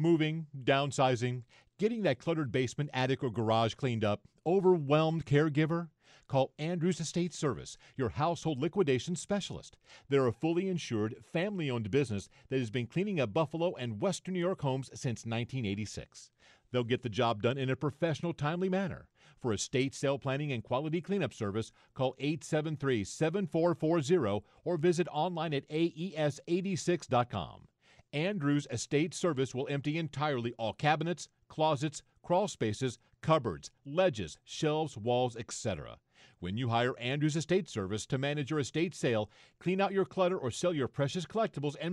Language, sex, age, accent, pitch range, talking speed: English, male, 50-69, American, 125-170 Hz, 145 wpm